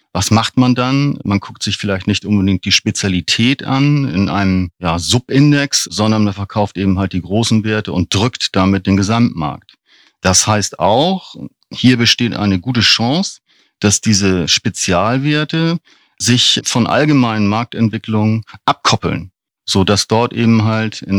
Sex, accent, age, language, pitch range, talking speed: male, German, 50-69, German, 100-120 Hz, 140 wpm